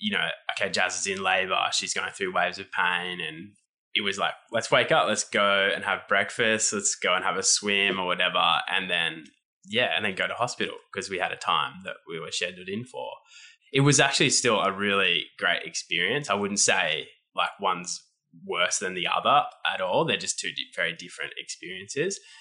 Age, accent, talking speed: 20-39, Australian, 205 wpm